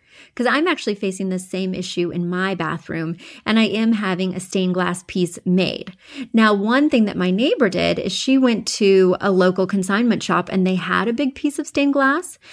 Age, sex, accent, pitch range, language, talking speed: 30-49, female, American, 180-235 Hz, English, 205 wpm